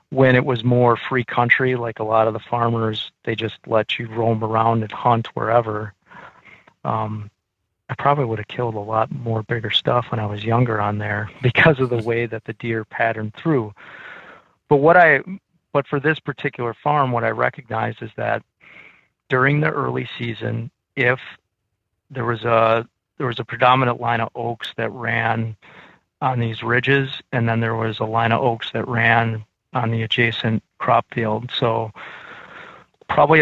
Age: 40-59